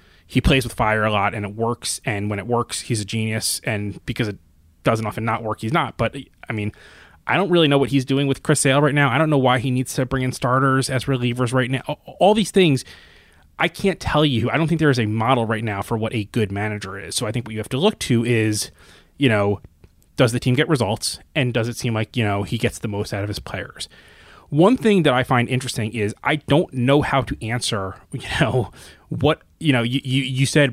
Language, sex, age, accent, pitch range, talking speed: English, male, 20-39, American, 110-145 Hz, 255 wpm